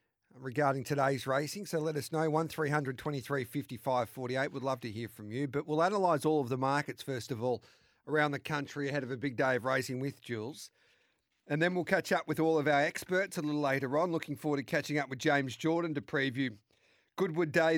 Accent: Australian